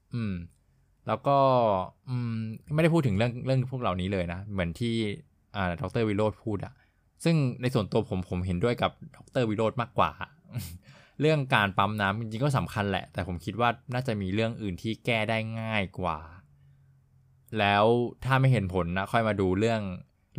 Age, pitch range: 20-39, 95-120 Hz